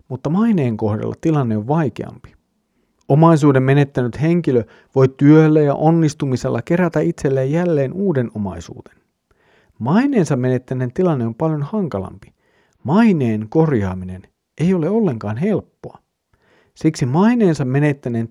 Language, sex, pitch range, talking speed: Finnish, male, 120-170 Hz, 110 wpm